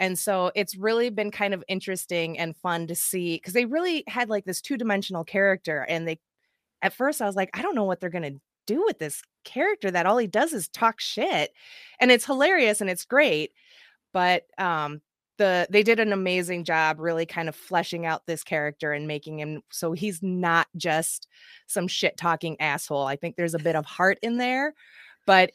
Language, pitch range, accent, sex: English, 165-210 Hz, American, female